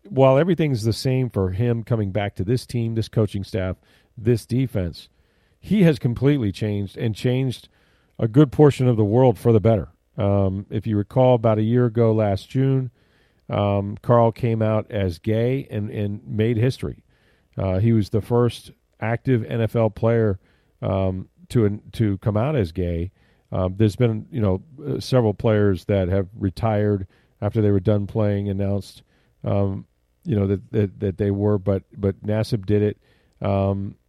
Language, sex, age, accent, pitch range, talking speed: English, male, 40-59, American, 100-120 Hz, 170 wpm